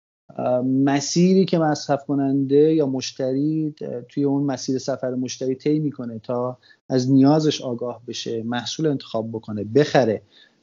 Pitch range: 120-150 Hz